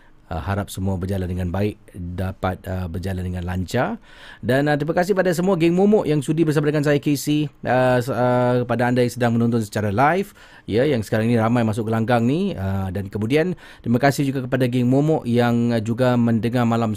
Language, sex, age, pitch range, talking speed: Malay, male, 30-49, 105-135 Hz, 200 wpm